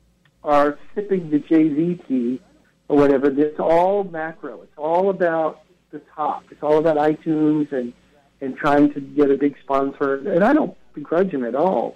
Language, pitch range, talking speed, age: English, 135-170 Hz, 170 wpm, 60-79